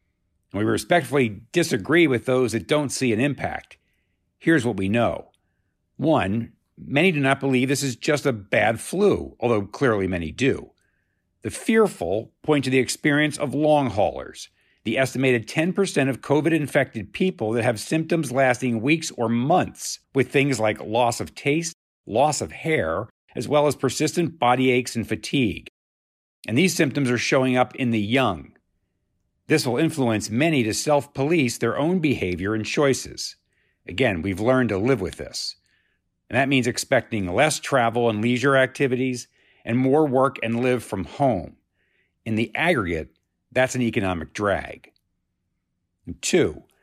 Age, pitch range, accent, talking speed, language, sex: 50-69, 110-145 Hz, American, 150 wpm, English, male